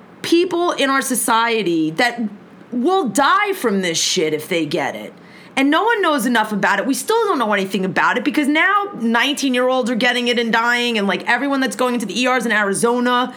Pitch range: 215-280 Hz